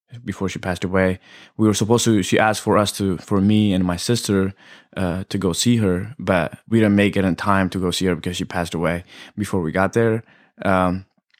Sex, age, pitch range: male, 20-39, 90-105 Hz